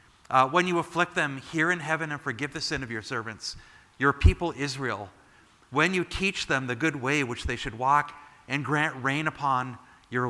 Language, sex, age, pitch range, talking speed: English, male, 40-59, 110-150 Hz, 200 wpm